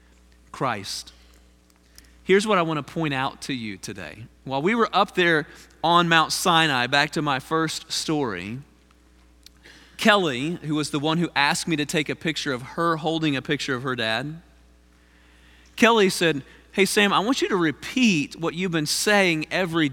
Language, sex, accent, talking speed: English, male, American, 175 wpm